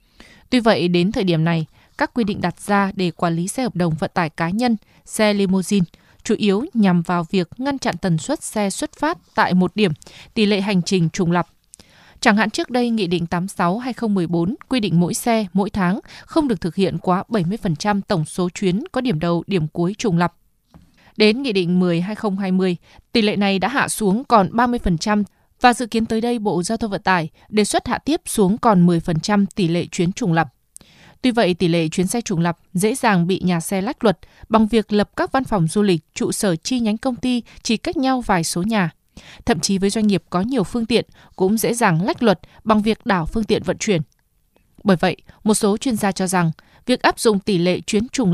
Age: 20-39